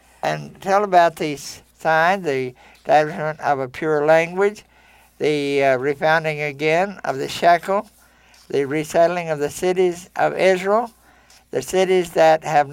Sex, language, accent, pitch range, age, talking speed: male, English, American, 150-190 Hz, 60-79, 135 wpm